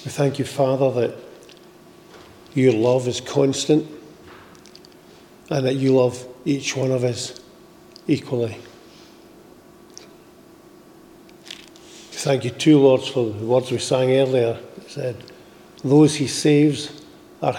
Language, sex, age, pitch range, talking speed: English, male, 50-69, 125-145 Hz, 115 wpm